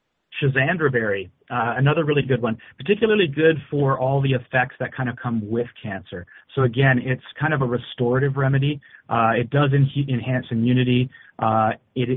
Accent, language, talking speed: American, English, 165 wpm